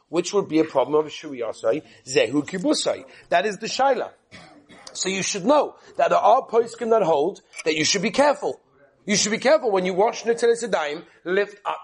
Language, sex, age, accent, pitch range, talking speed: English, male, 40-59, British, 170-240 Hz, 200 wpm